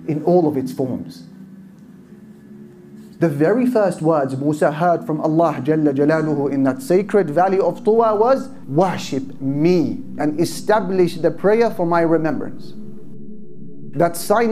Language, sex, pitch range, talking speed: English, male, 140-205 Hz, 135 wpm